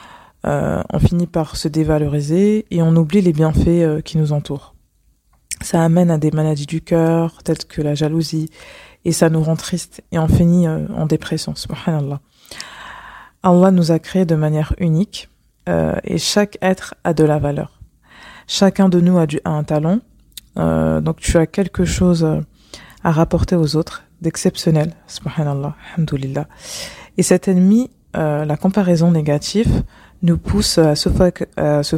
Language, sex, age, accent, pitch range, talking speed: French, female, 20-39, French, 155-180 Hz, 160 wpm